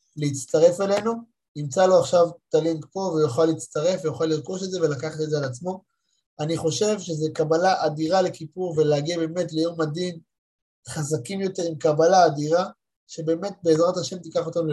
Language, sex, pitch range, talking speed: Hebrew, male, 140-175 Hz, 160 wpm